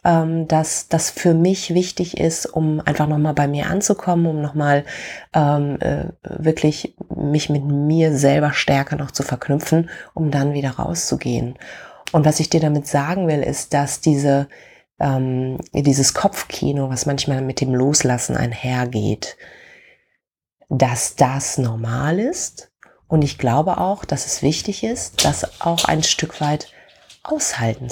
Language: German